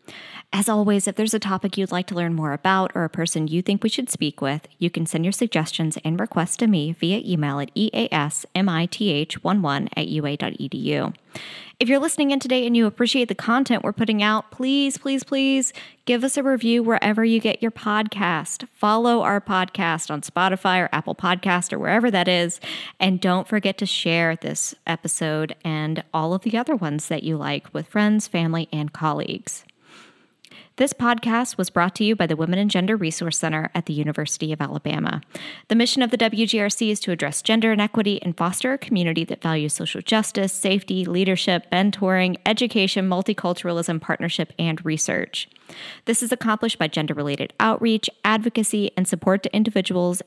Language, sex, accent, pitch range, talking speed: English, female, American, 170-220 Hz, 180 wpm